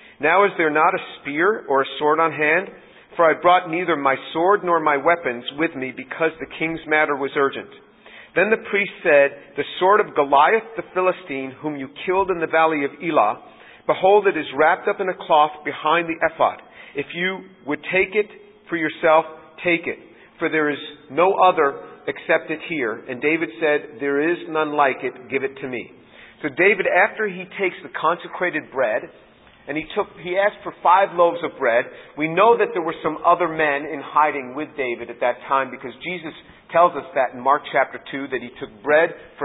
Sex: male